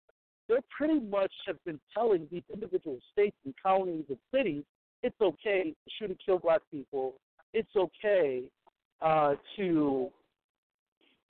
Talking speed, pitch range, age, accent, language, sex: 125 wpm, 170-265 Hz, 50-69, American, English, male